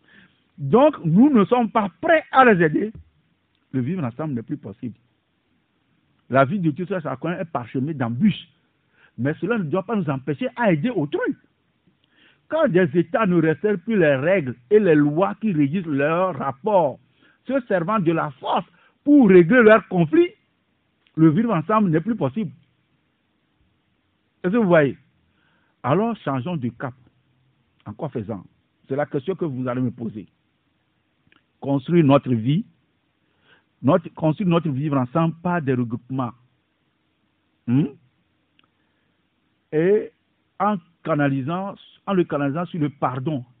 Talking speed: 140 wpm